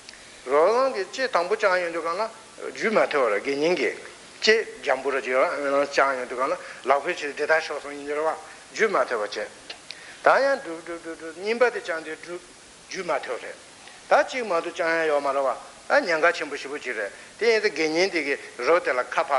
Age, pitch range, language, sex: 60-79, 155-250 Hz, Italian, male